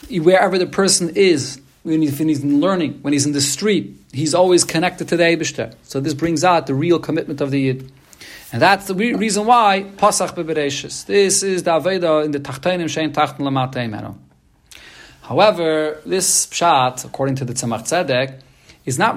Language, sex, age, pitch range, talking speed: English, male, 40-59, 140-185 Hz, 175 wpm